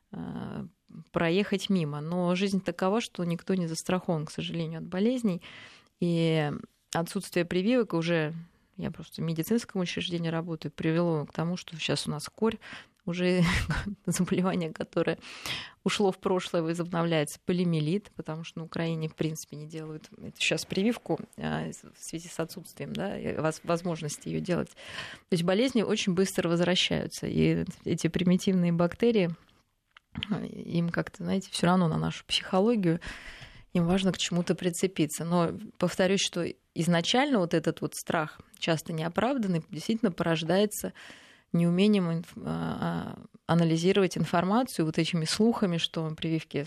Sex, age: female, 20-39